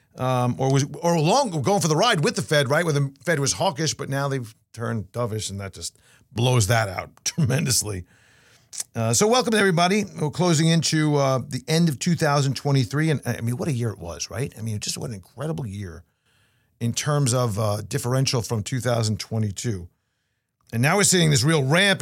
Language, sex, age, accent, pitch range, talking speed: English, male, 50-69, American, 120-165 Hz, 195 wpm